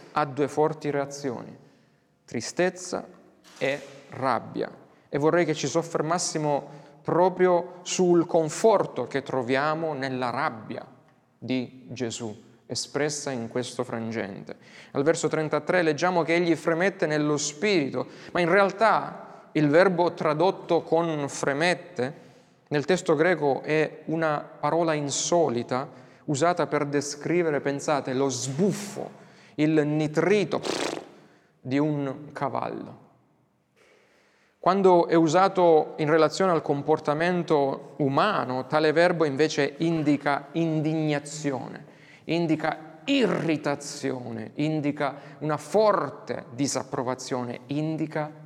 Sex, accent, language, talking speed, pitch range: male, native, Italian, 100 wpm, 140-170 Hz